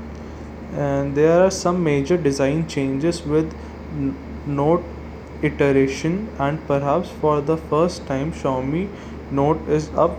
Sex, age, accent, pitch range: male, 20-39, Indian, 120-155 Hz